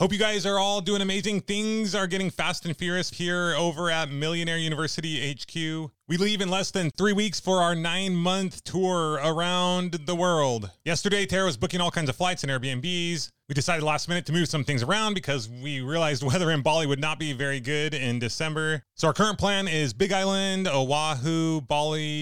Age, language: 30-49, English